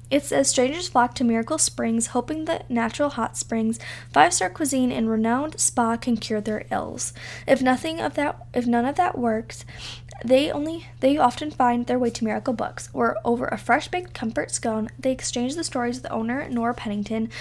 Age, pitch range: 10-29, 210-260 Hz